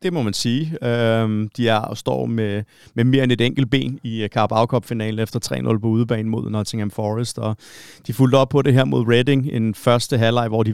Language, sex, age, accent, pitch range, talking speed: Danish, male, 30-49, native, 110-130 Hz, 220 wpm